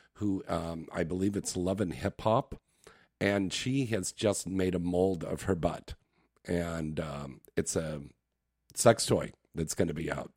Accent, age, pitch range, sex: American, 50-69, 80-105 Hz, male